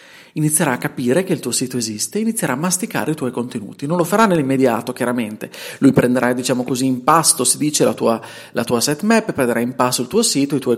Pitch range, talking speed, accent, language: 120-165 Hz, 225 wpm, native, Italian